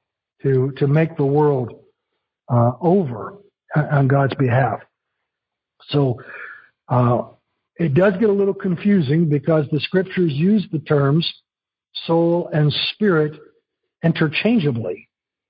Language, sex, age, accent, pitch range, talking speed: English, male, 60-79, American, 140-180 Hz, 110 wpm